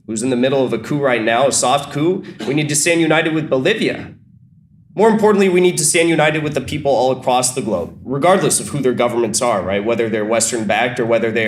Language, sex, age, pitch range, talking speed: English, male, 20-39, 130-185 Hz, 245 wpm